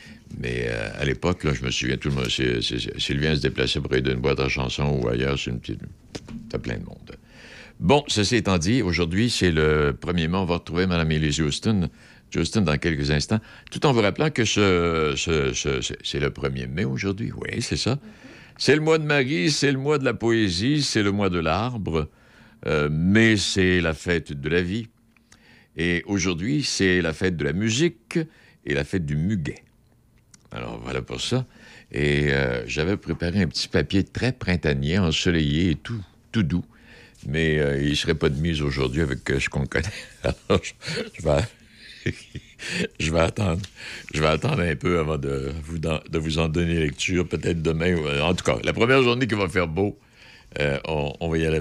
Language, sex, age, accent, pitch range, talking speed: French, male, 60-79, French, 75-110 Hz, 195 wpm